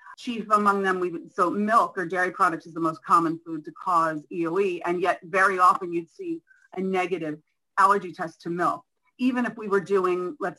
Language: English